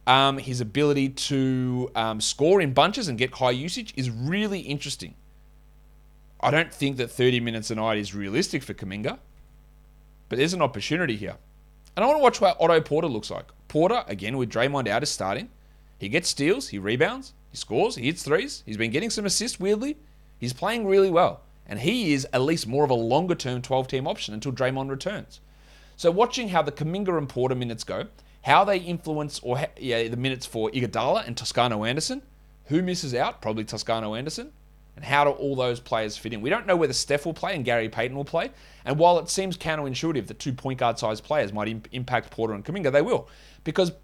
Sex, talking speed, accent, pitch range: male, 200 wpm, Australian, 115-160 Hz